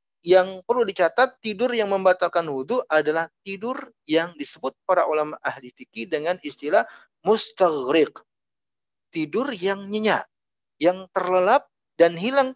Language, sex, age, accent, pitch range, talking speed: Indonesian, male, 40-59, native, 145-210 Hz, 120 wpm